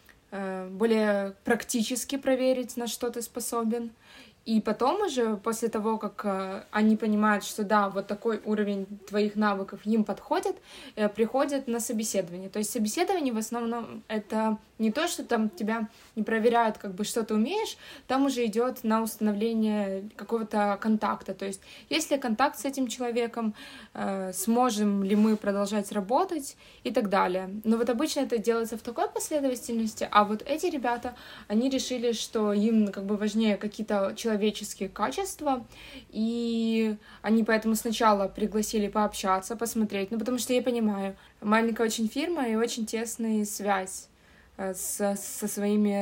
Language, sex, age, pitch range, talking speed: Ukrainian, female, 20-39, 205-235 Hz, 145 wpm